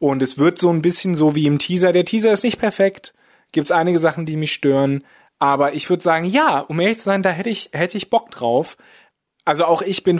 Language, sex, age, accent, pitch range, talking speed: German, male, 30-49, German, 140-170 Hz, 245 wpm